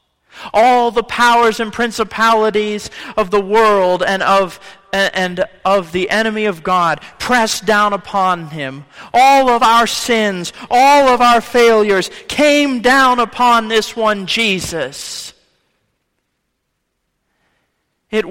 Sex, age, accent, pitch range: male, 40-59, American, 185-245 Hz